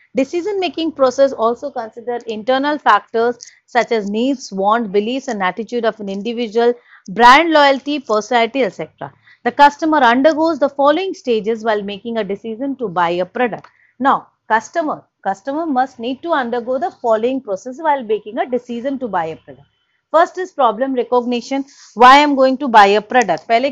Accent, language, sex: Indian, English, female